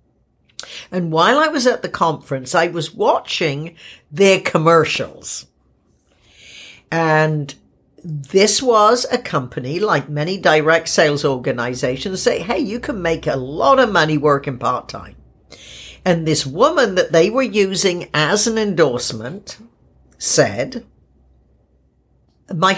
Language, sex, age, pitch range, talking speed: English, female, 60-79, 150-220 Hz, 120 wpm